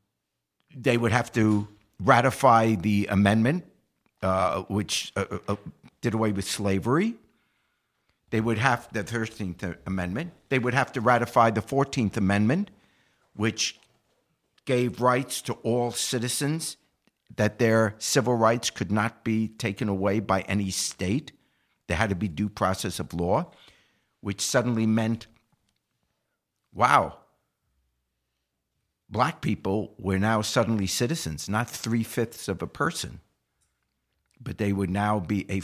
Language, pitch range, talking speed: English, 95-120 Hz, 130 wpm